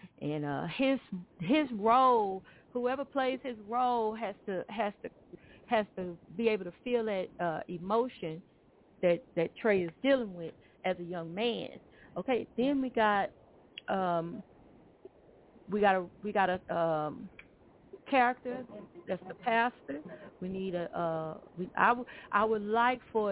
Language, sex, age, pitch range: English, female, 40-59, 185-245 Hz